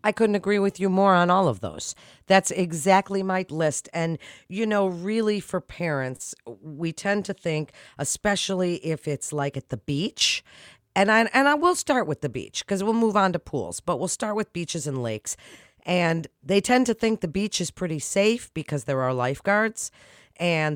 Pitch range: 145-195 Hz